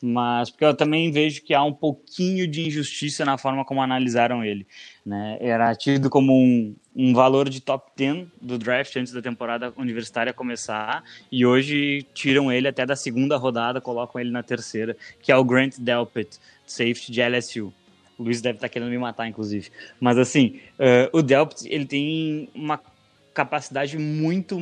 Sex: male